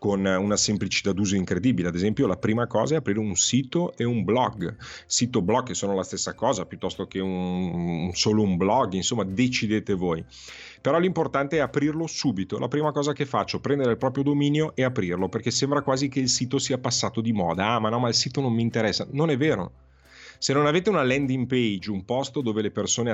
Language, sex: Italian, male